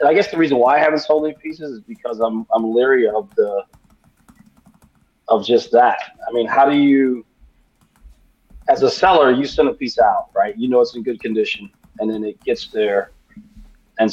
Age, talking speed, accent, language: 30-49, 195 wpm, American, English